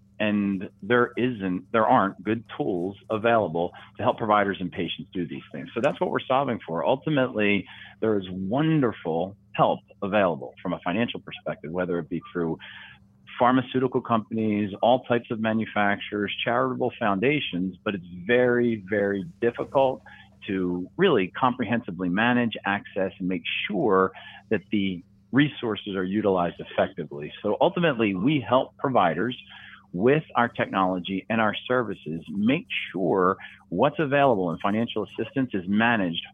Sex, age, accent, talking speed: male, 40-59, American, 135 wpm